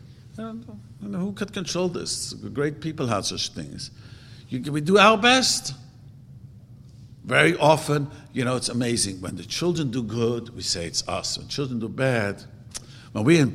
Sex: male